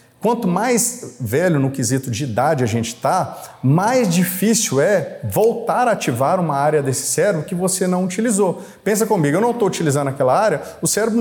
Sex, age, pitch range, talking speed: male, 40-59, 130-170 Hz, 180 wpm